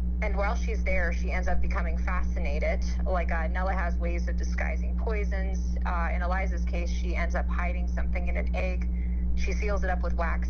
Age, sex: 30-49, female